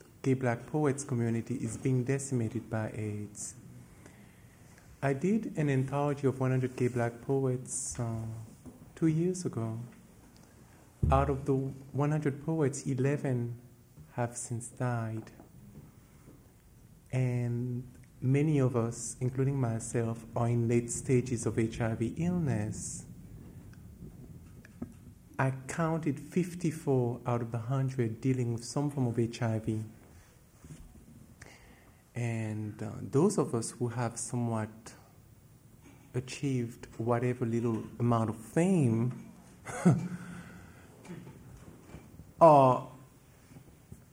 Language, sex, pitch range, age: English, male, 115-135 Hz, 50-69